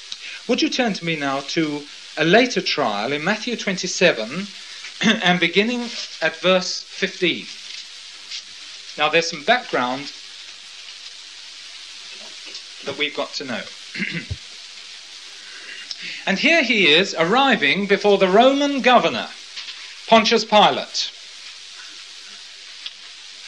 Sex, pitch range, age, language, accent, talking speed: male, 135-215 Hz, 40-59, English, British, 95 wpm